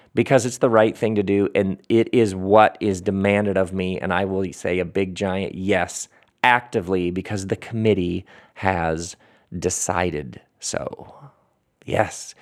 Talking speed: 150 wpm